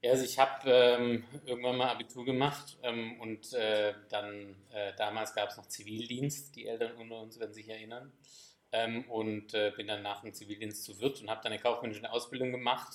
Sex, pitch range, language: male, 105-120 Hz, German